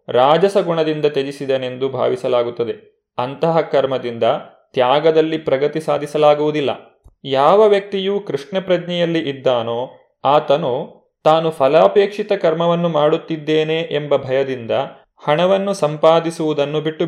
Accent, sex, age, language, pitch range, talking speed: native, male, 30-49, Kannada, 140-180 Hz, 85 wpm